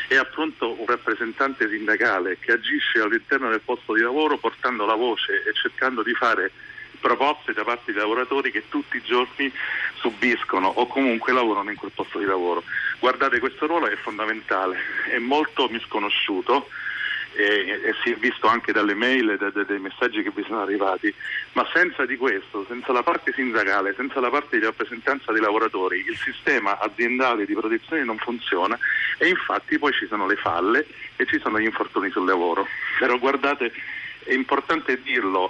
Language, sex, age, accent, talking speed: Italian, male, 40-59, native, 170 wpm